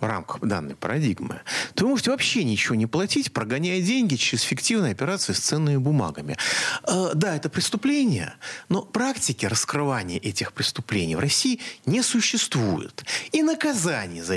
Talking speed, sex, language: 145 wpm, male, Russian